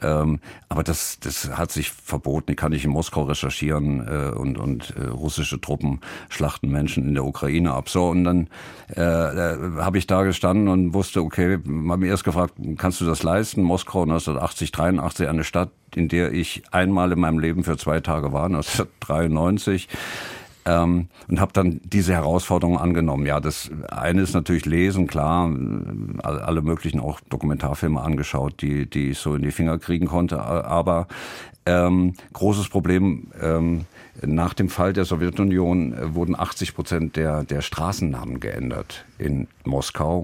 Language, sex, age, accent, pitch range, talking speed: German, male, 50-69, German, 80-95 Hz, 160 wpm